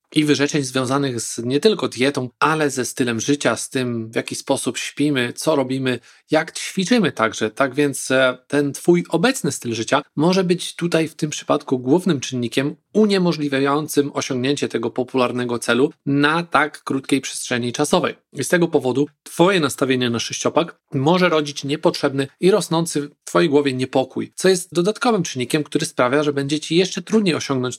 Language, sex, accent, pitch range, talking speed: Polish, male, native, 125-155 Hz, 160 wpm